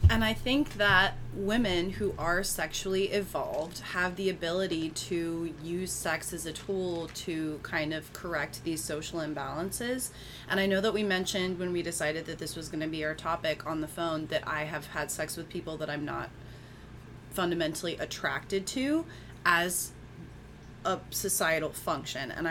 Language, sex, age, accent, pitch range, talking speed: English, female, 20-39, American, 155-195 Hz, 170 wpm